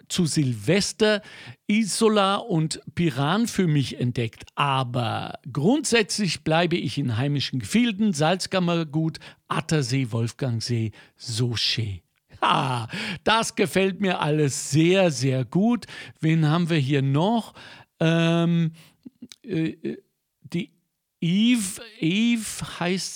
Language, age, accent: German, 50-69, German